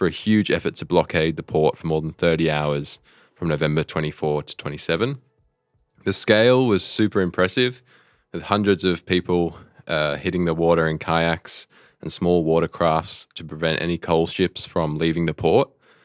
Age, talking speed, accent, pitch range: 20-39, 170 wpm, Australian, 80-90 Hz